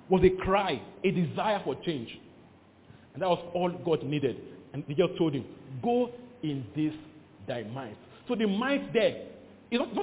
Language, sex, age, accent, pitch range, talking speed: English, male, 40-59, Nigerian, 135-220 Hz, 175 wpm